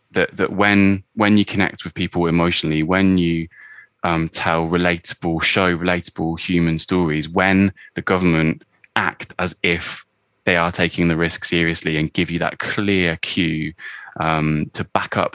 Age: 20-39